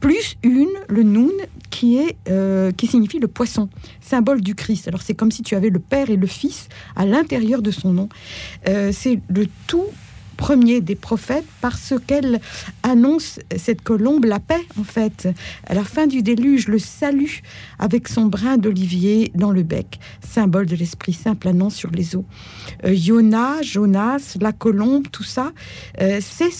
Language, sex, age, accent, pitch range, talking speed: French, female, 60-79, French, 185-245 Hz, 170 wpm